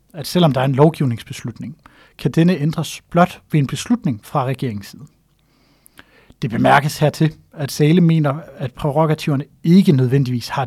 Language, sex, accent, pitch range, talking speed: Danish, male, native, 130-155 Hz, 145 wpm